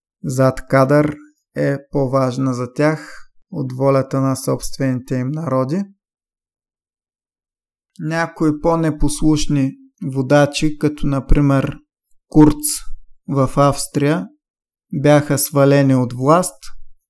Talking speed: 85 wpm